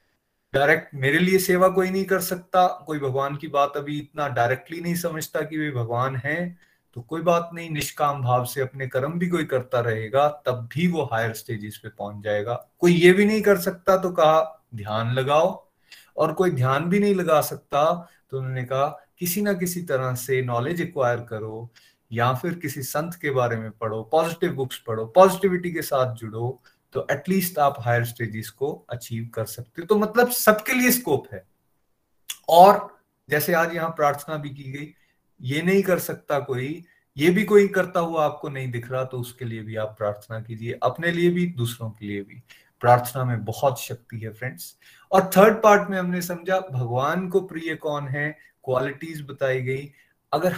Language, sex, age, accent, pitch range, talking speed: Hindi, male, 30-49, native, 125-175 Hz, 185 wpm